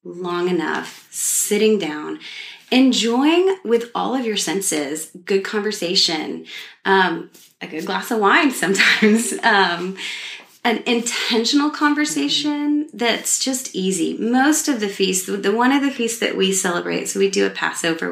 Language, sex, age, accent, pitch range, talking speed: English, female, 30-49, American, 165-235 Hz, 140 wpm